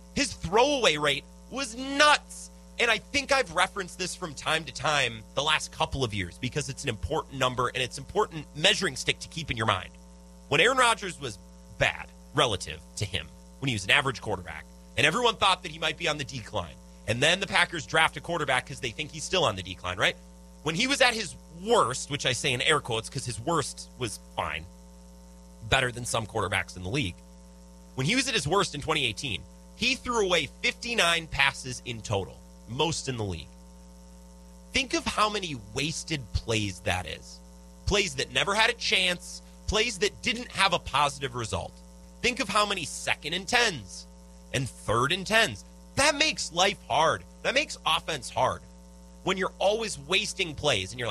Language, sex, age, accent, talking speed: English, male, 30-49, American, 195 wpm